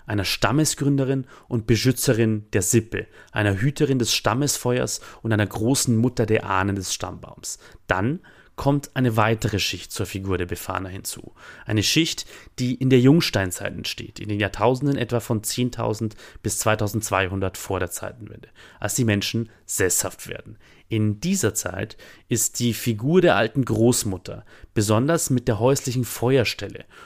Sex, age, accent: male, 30-49, German